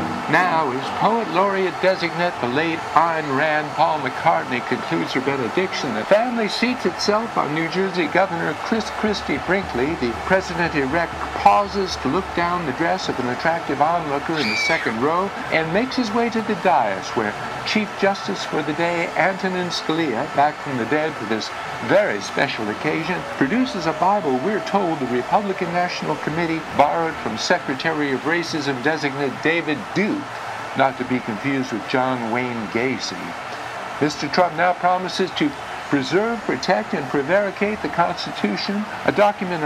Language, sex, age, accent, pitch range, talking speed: English, male, 60-79, American, 155-210 Hz, 155 wpm